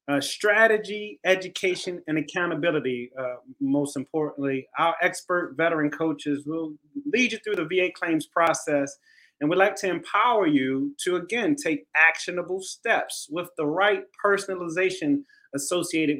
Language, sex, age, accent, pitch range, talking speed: English, male, 30-49, American, 140-180 Hz, 135 wpm